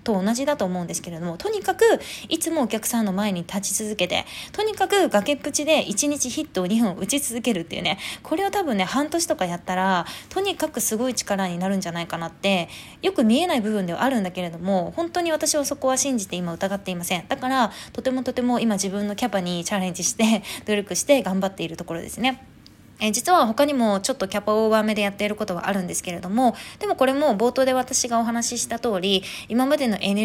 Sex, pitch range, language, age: female, 185-275 Hz, Japanese, 20-39